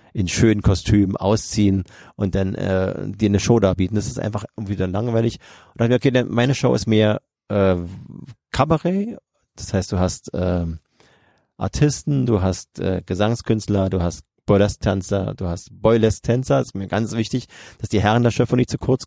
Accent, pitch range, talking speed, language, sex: German, 95-125 Hz, 170 wpm, German, male